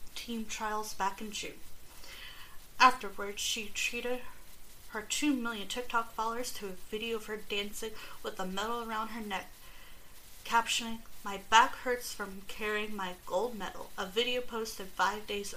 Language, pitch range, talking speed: English, 195-225 Hz, 150 wpm